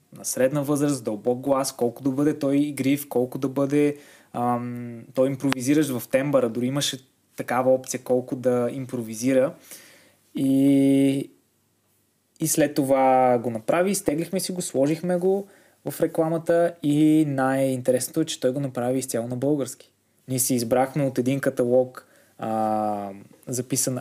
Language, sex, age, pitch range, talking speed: Bulgarian, male, 20-39, 125-150 Hz, 140 wpm